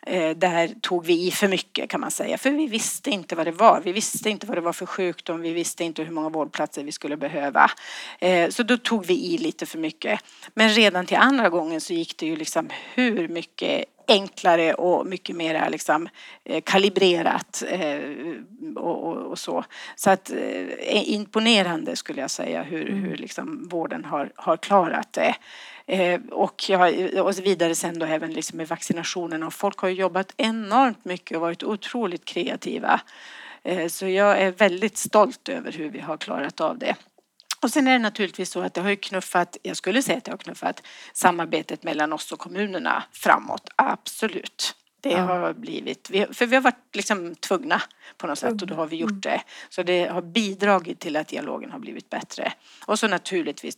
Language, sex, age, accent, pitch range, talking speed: Swedish, female, 30-49, native, 165-215 Hz, 180 wpm